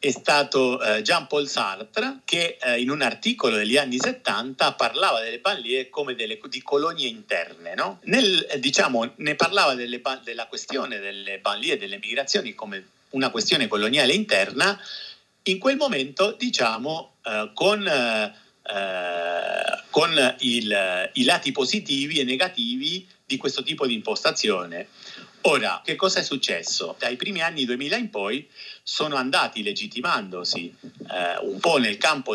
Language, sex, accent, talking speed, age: Italian, male, native, 135 wpm, 50-69